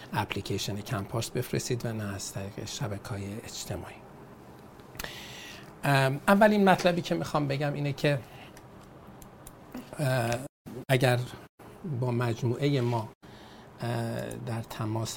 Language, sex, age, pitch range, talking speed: Persian, male, 50-69, 115-135 Hz, 85 wpm